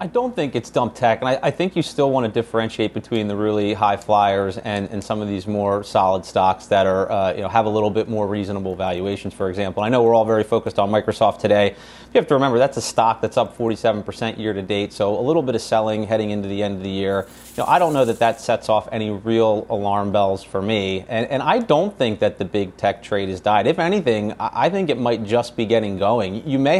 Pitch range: 105-130 Hz